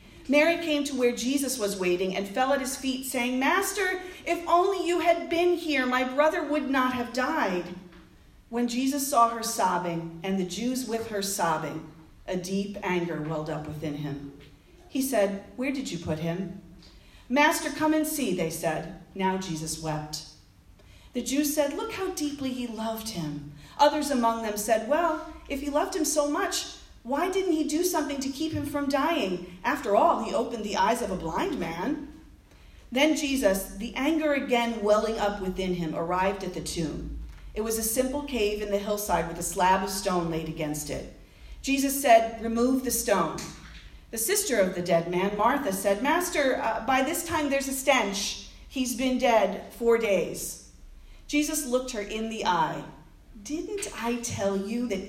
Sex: female